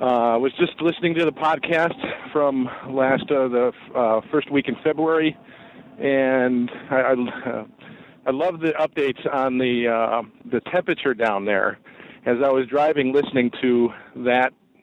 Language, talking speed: English, 160 wpm